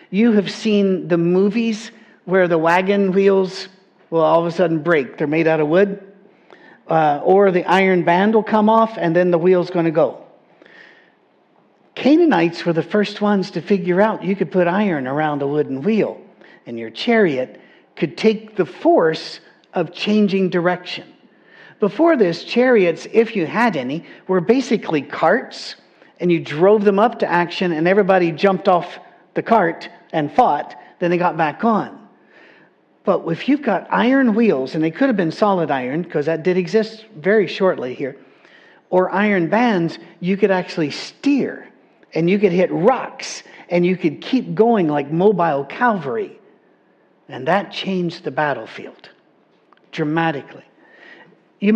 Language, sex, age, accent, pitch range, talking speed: English, male, 50-69, American, 165-210 Hz, 160 wpm